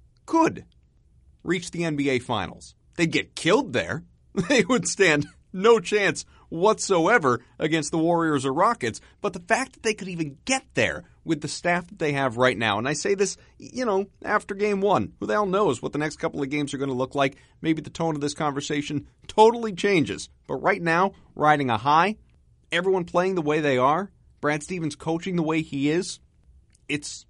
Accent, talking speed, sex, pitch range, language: American, 195 wpm, male, 120-170 Hz, English